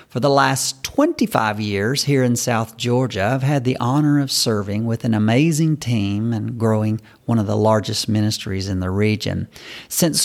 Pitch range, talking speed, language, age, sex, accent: 110-170 Hz, 175 wpm, English, 40-59, male, American